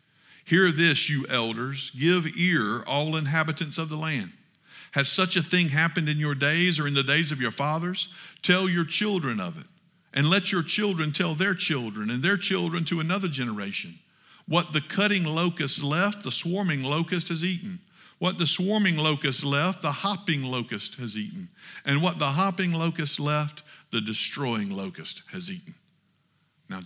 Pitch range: 125-175 Hz